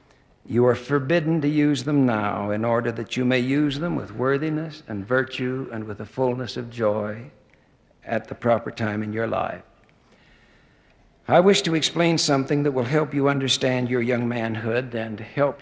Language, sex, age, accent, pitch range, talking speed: English, male, 60-79, American, 115-145 Hz, 175 wpm